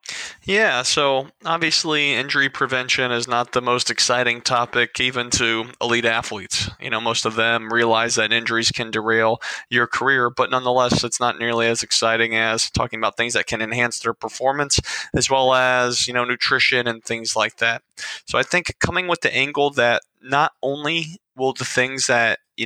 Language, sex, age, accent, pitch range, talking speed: English, male, 20-39, American, 115-130 Hz, 180 wpm